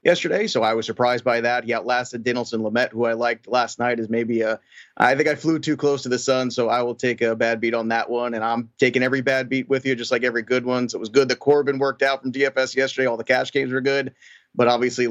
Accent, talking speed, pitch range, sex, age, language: American, 280 wpm, 120-145 Hz, male, 30-49, English